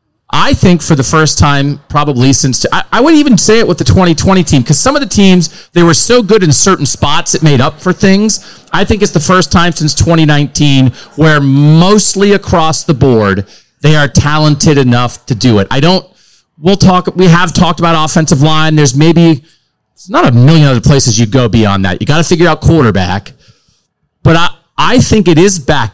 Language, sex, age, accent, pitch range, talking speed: English, male, 40-59, American, 135-175 Hz, 210 wpm